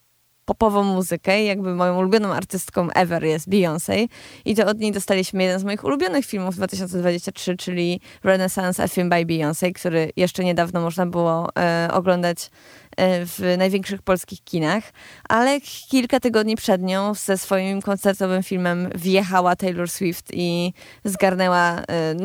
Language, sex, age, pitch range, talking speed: Polish, female, 20-39, 180-230 Hz, 145 wpm